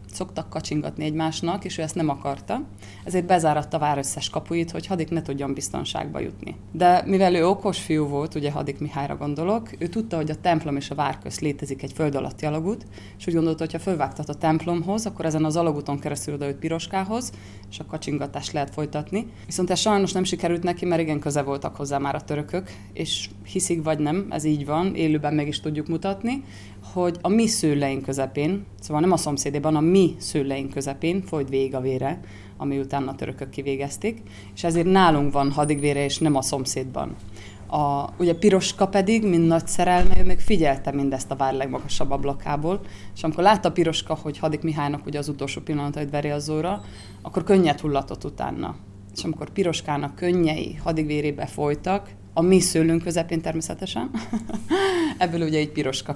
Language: Hungarian